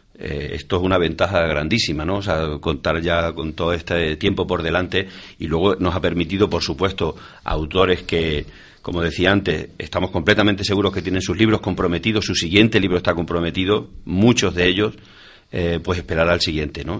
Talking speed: 180 wpm